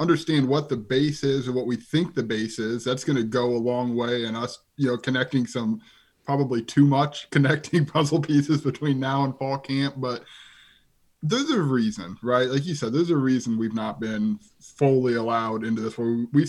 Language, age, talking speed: English, 20-39, 200 wpm